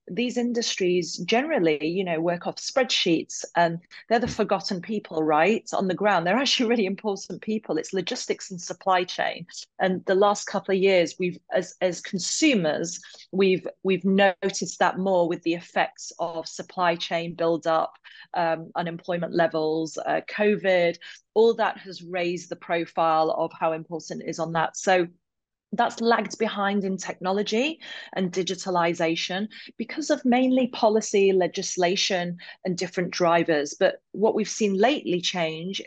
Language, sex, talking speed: English, female, 150 wpm